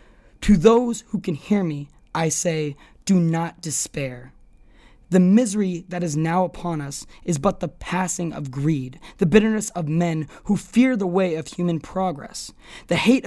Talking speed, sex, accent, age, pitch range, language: 165 wpm, male, American, 20-39, 180-240 Hz, English